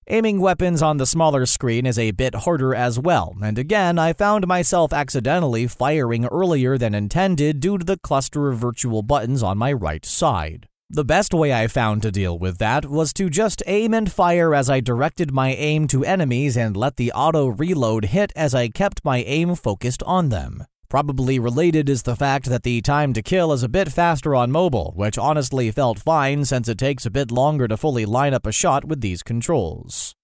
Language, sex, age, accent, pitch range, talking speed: English, male, 30-49, American, 120-165 Hz, 205 wpm